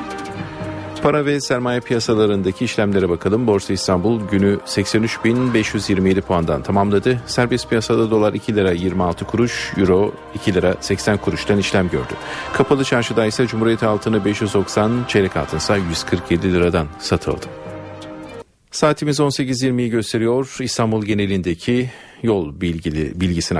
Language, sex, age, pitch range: Turkish, male, 40-59, 95-120 Hz